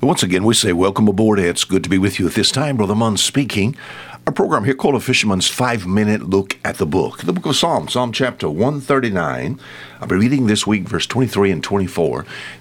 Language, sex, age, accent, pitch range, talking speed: English, male, 60-79, American, 90-120 Hz, 215 wpm